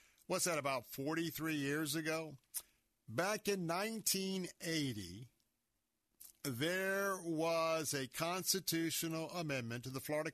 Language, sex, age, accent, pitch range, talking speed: English, male, 50-69, American, 130-170 Hz, 100 wpm